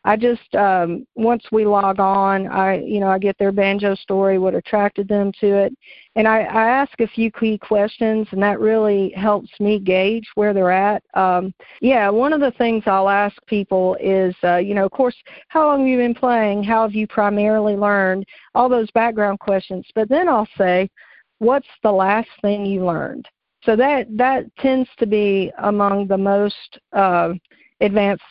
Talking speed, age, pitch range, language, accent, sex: 185 wpm, 50-69, 195-225 Hz, English, American, female